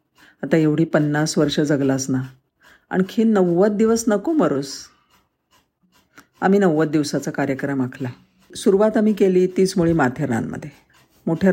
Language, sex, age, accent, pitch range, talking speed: Marathi, female, 50-69, native, 140-180 Hz, 125 wpm